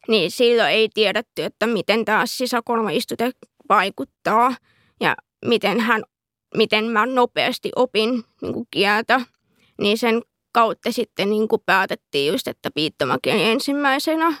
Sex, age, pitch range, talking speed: female, 20-39, 220-245 Hz, 115 wpm